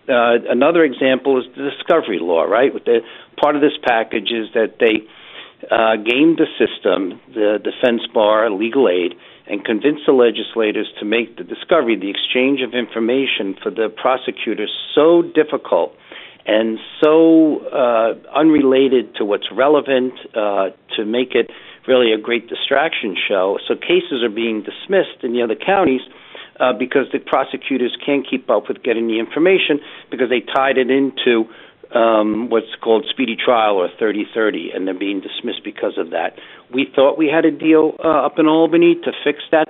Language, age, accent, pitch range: English, 60-79, American, 115-155 Hz